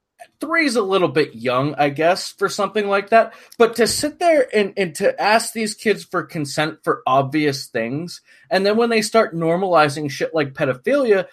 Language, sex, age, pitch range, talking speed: English, male, 30-49, 155-220 Hz, 190 wpm